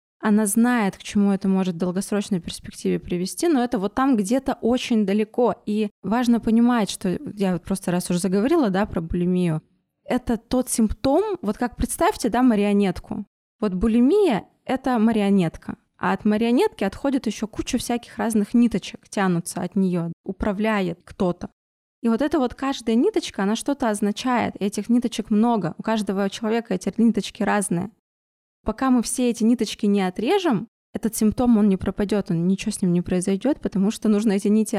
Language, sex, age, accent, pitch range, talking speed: Russian, female, 20-39, native, 200-235 Hz, 165 wpm